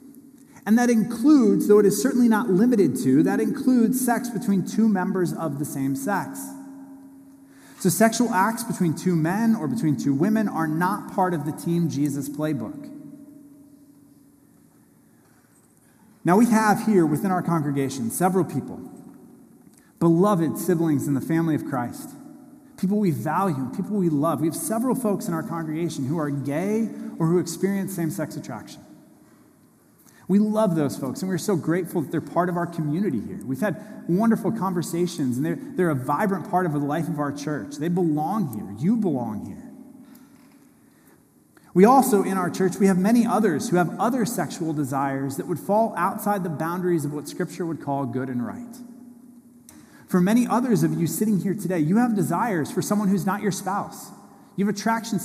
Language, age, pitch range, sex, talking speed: English, 30-49, 165-235 Hz, male, 175 wpm